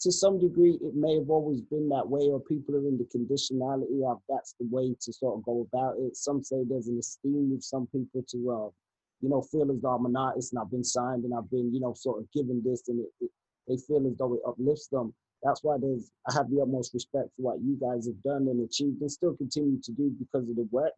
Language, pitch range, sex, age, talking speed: English, 125-140 Hz, male, 30-49, 265 wpm